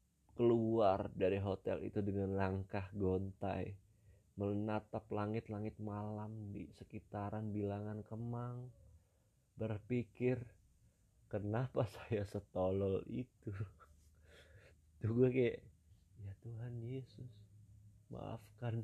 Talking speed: 80 wpm